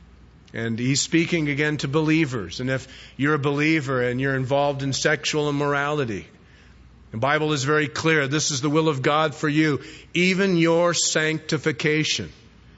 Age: 50-69